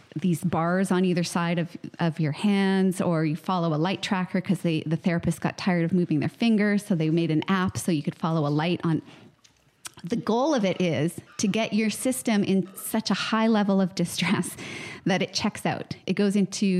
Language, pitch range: English, 170-195 Hz